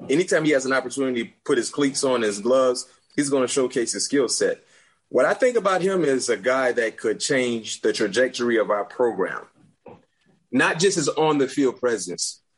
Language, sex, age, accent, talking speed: English, male, 30-49, American, 190 wpm